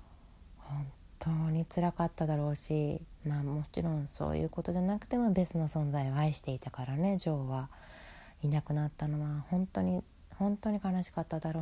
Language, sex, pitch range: Japanese, female, 115-155 Hz